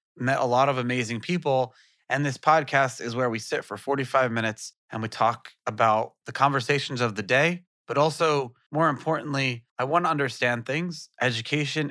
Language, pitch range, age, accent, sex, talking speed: English, 120-140 Hz, 30-49, American, male, 175 wpm